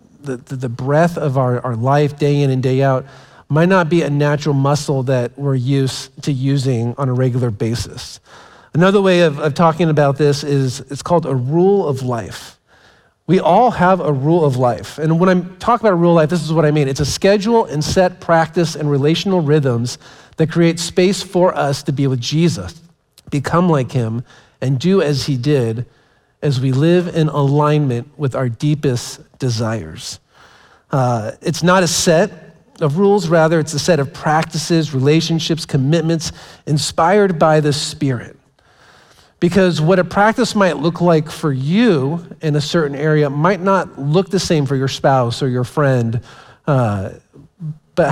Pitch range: 135-170 Hz